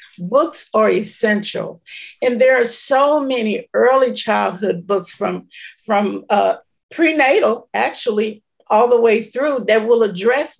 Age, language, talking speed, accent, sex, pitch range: 50-69, English, 130 wpm, American, female, 215-265 Hz